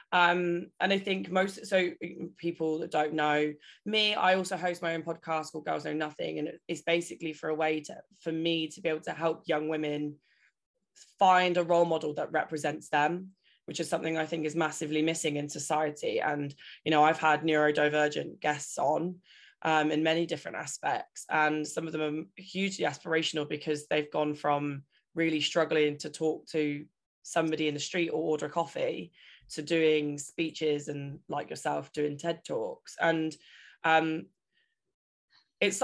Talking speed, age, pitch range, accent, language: 170 wpm, 20-39, 150-175 Hz, British, English